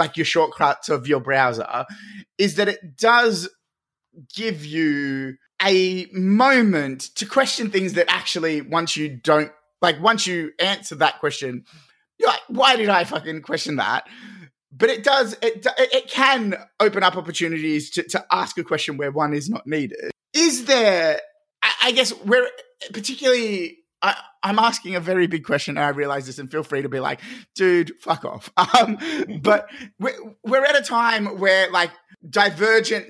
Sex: male